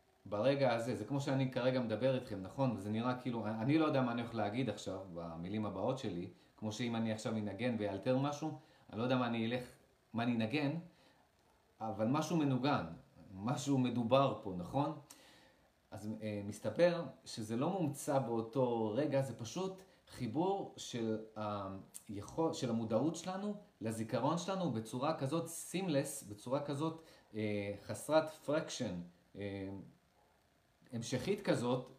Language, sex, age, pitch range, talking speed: Hebrew, male, 30-49, 110-150 Hz, 140 wpm